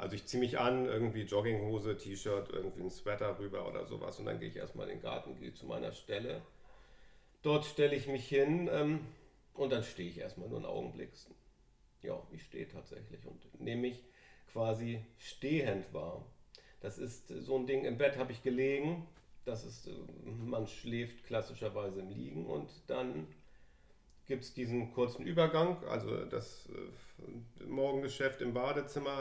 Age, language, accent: 40-59, German, German